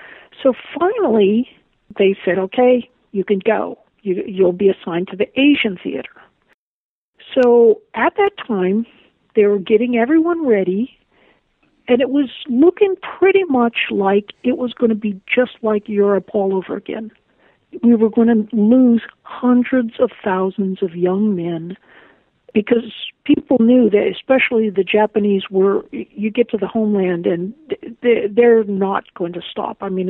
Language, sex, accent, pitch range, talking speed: English, female, American, 195-250 Hz, 150 wpm